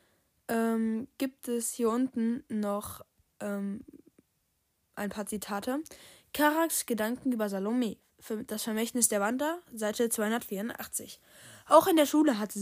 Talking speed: 120 wpm